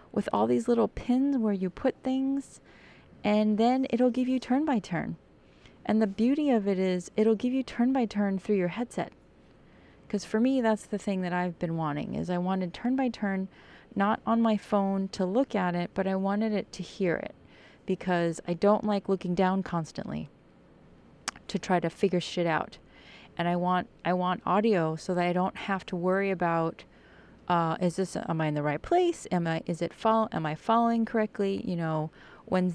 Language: English